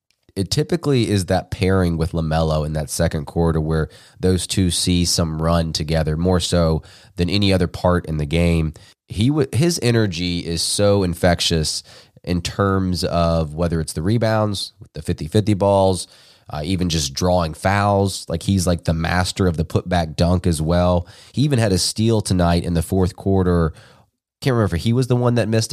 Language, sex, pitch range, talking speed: English, male, 85-100 Hz, 185 wpm